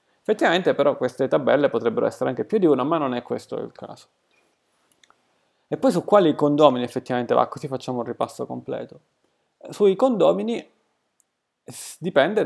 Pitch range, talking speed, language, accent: 125-175 Hz, 150 wpm, Italian, native